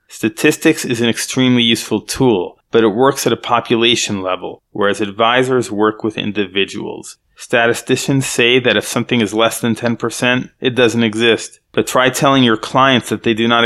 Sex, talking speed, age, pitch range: male, 170 wpm, 30-49, 110-125 Hz